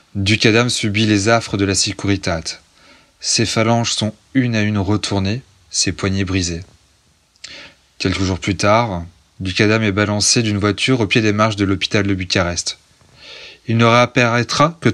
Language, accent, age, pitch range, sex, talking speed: French, French, 20-39, 95-115 Hz, male, 155 wpm